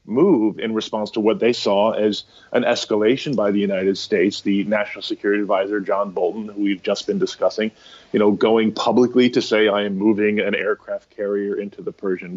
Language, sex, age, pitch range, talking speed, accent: English, male, 30-49, 105-115 Hz, 195 wpm, American